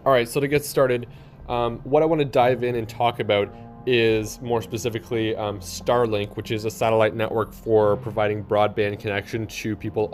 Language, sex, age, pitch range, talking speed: English, male, 20-39, 105-120 Hz, 185 wpm